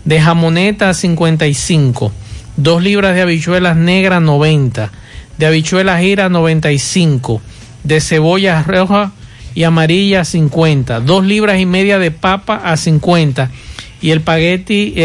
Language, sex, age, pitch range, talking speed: Spanish, male, 50-69, 155-180 Hz, 135 wpm